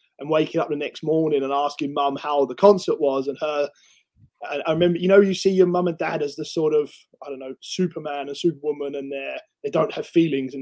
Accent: British